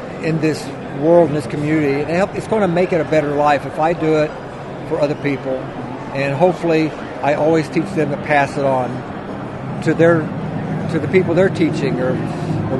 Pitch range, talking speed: 160-190 Hz, 190 wpm